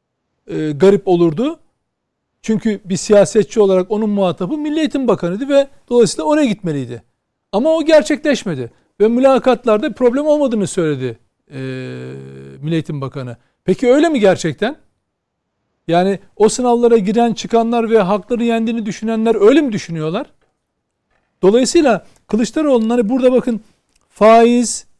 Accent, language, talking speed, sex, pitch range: native, Turkish, 120 wpm, male, 185-245 Hz